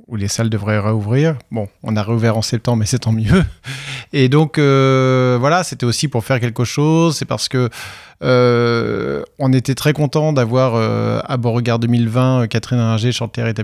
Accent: French